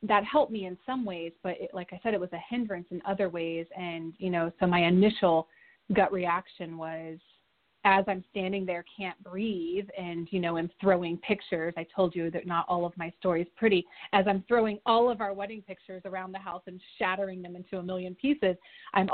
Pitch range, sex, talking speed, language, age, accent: 180-235 Hz, female, 215 wpm, English, 30-49, American